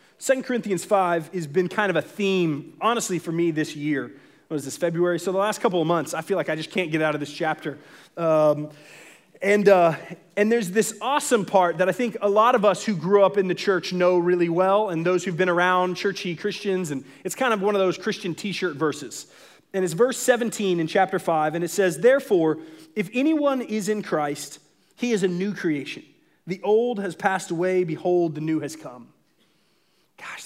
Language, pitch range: English, 165-215 Hz